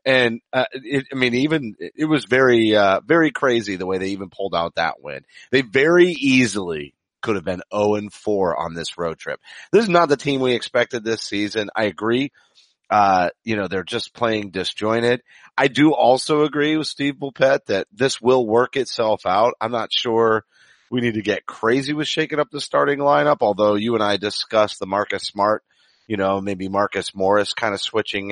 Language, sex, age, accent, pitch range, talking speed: English, male, 30-49, American, 105-130 Hz, 195 wpm